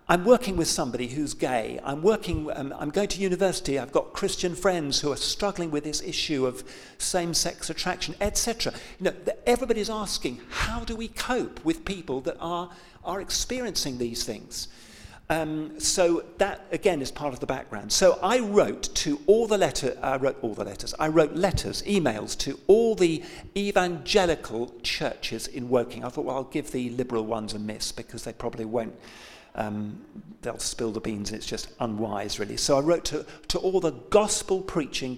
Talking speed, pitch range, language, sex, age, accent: 185 wpm, 125-195 Hz, English, male, 50-69, British